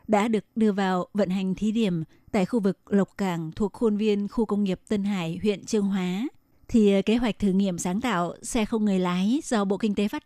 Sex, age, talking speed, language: female, 20-39, 235 wpm, Vietnamese